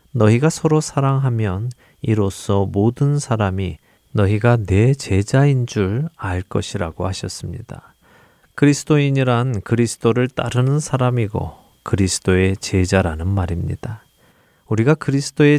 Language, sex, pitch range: Korean, male, 95-130 Hz